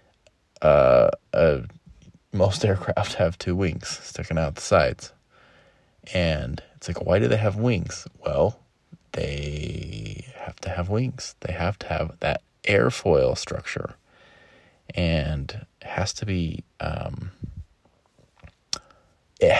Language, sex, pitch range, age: English, male, 85-110 Hz, 30-49